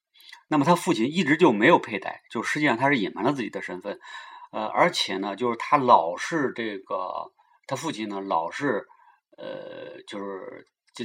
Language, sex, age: Chinese, male, 30-49